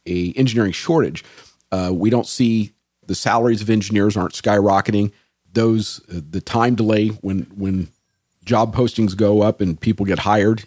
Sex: male